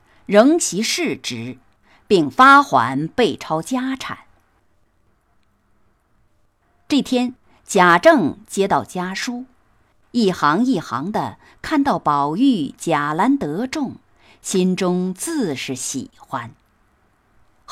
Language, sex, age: Chinese, female, 50-69